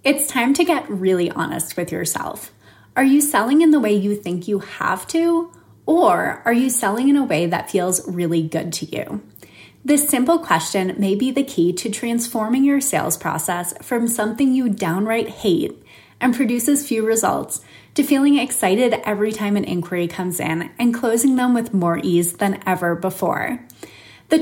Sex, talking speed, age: female, 175 wpm, 20-39